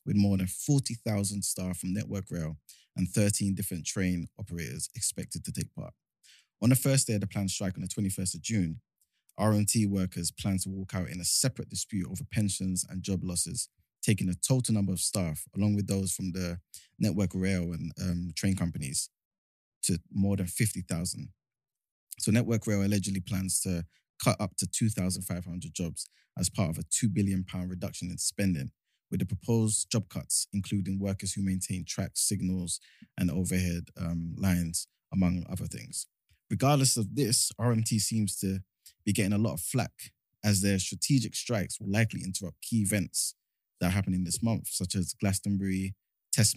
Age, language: 20-39, English